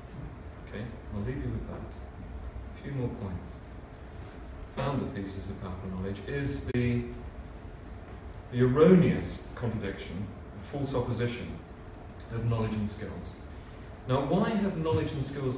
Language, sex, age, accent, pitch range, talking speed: English, male, 40-59, British, 95-140 Hz, 125 wpm